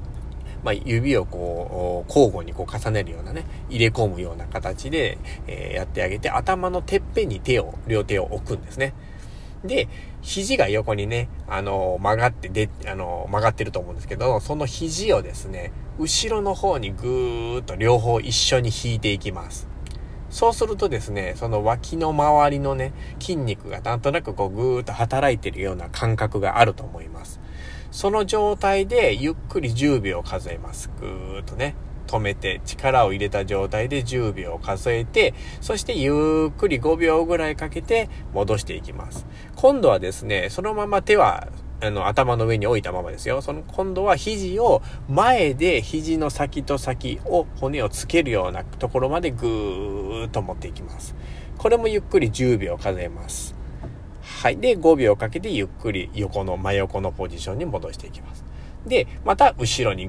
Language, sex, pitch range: Japanese, male, 95-145 Hz